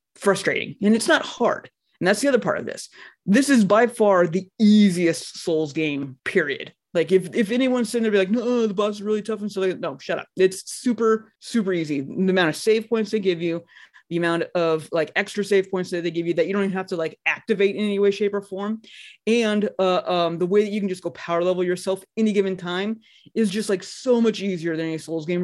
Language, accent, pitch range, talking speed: English, American, 170-220 Hz, 245 wpm